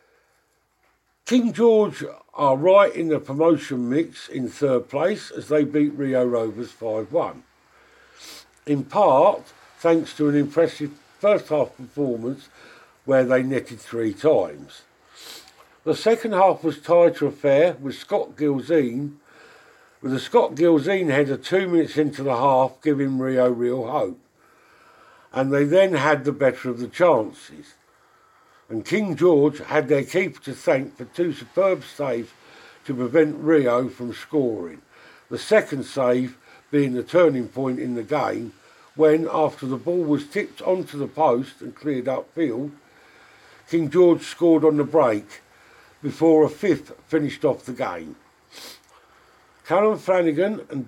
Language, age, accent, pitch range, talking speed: English, 50-69, British, 130-165 Hz, 145 wpm